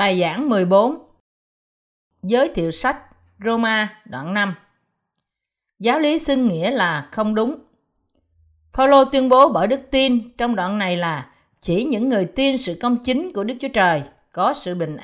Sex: female